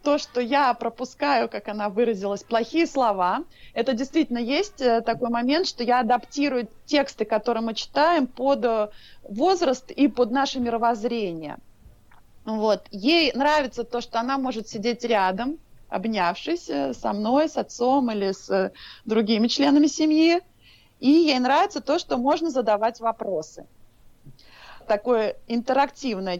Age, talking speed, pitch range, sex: 30-49, 125 wpm, 215-275 Hz, female